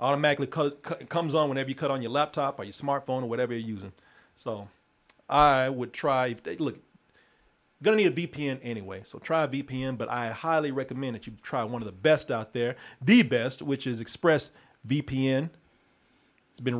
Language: English